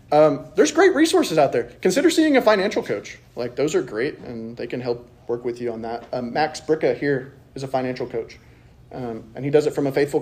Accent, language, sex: American, English, male